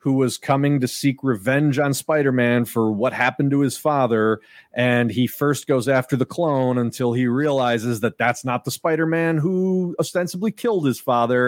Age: 30-49